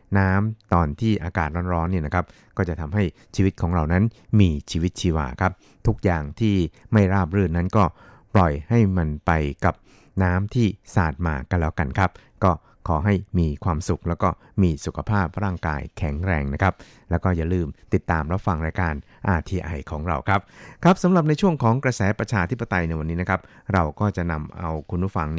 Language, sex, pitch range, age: Thai, male, 80-100 Hz, 60-79